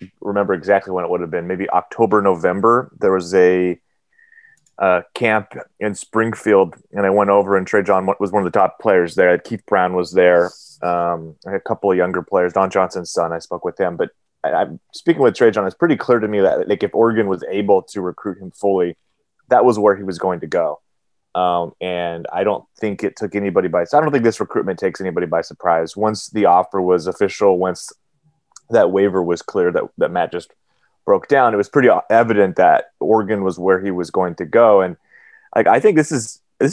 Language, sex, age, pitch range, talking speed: English, male, 30-49, 90-115 Hz, 220 wpm